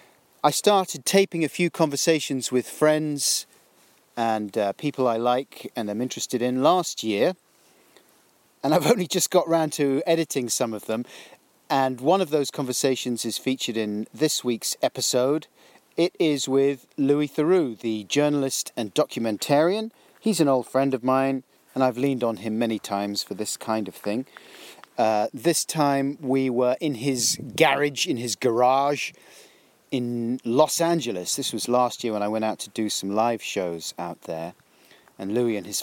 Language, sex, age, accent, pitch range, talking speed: English, male, 40-59, British, 110-145 Hz, 170 wpm